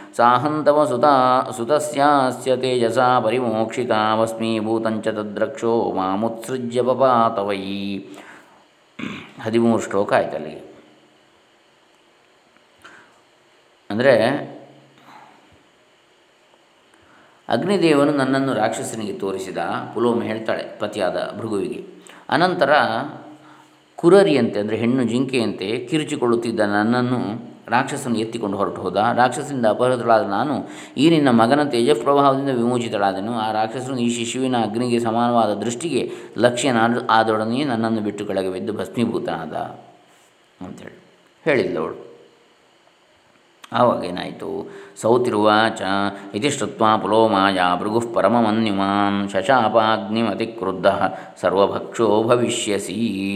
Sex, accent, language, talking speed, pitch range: male, native, Kannada, 75 wpm, 105-125 Hz